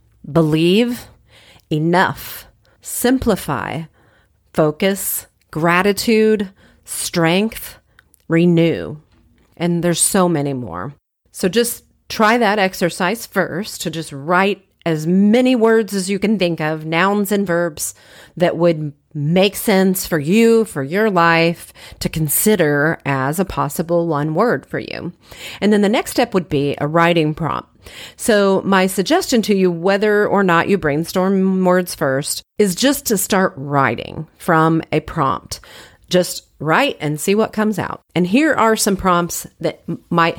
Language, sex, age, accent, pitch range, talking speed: English, female, 40-59, American, 155-200 Hz, 140 wpm